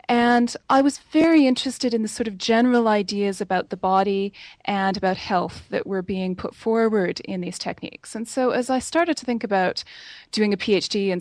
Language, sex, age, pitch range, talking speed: English, female, 20-39, 195-240 Hz, 200 wpm